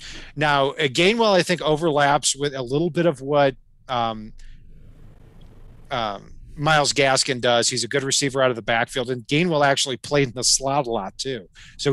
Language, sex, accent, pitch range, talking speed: English, male, American, 120-150 Hz, 175 wpm